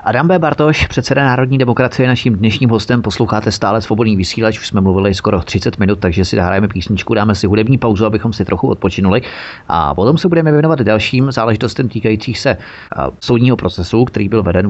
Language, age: Czech, 30-49